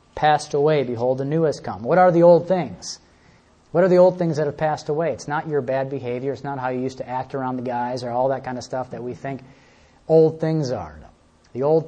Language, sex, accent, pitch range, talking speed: English, male, American, 125-150 Hz, 255 wpm